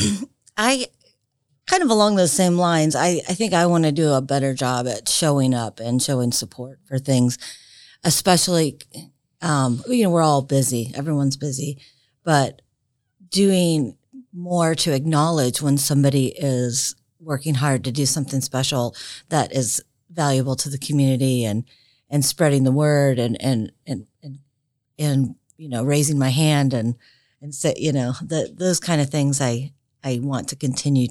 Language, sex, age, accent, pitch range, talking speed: English, female, 40-59, American, 125-150 Hz, 160 wpm